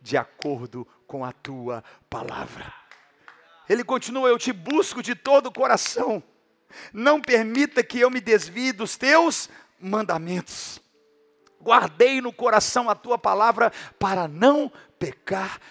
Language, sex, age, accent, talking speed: Portuguese, male, 50-69, Brazilian, 125 wpm